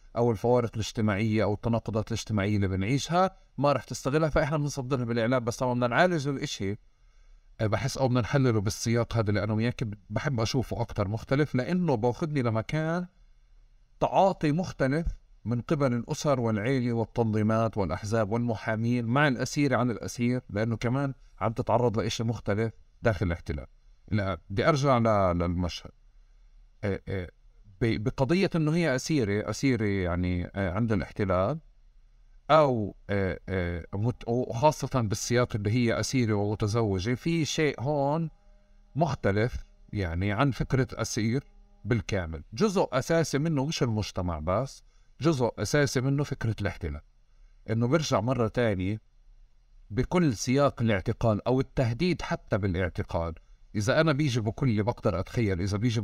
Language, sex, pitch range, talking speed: Arabic, male, 105-135 Hz, 125 wpm